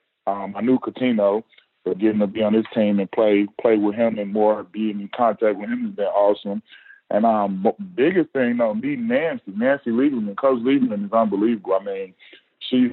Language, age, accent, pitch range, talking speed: English, 20-39, American, 105-125 Hz, 195 wpm